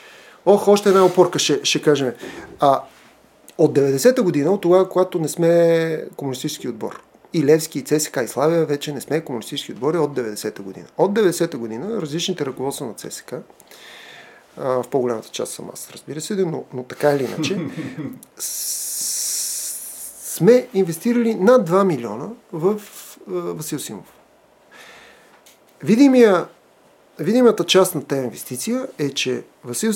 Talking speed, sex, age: 145 wpm, male, 40-59